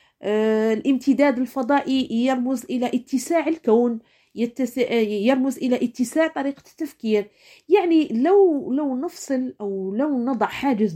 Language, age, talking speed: Arabic, 40-59, 110 wpm